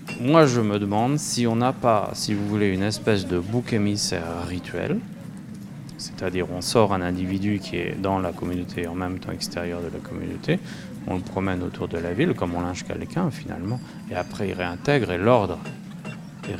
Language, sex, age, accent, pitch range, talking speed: French, male, 30-49, French, 100-165 Hz, 195 wpm